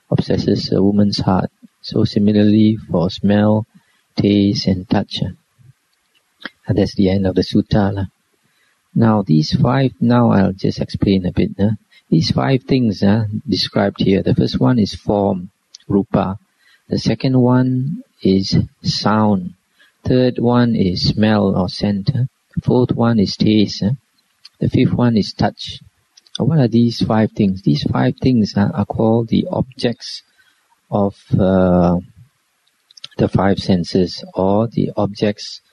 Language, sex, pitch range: English, male, 95-120 Hz